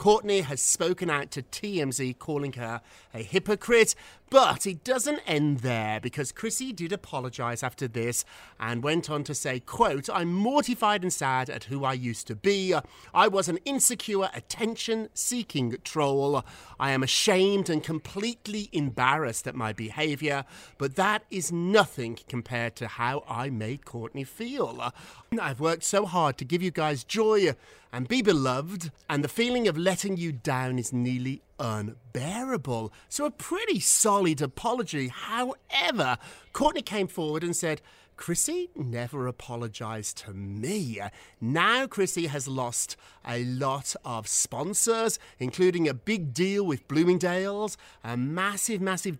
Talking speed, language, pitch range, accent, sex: 145 wpm, English, 125-195 Hz, British, male